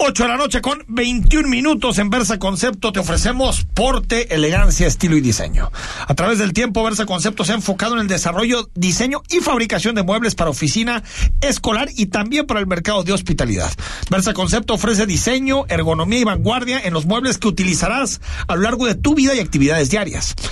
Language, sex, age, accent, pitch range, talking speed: Spanish, male, 40-59, Mexican, 170-240 Hz, 190 wpm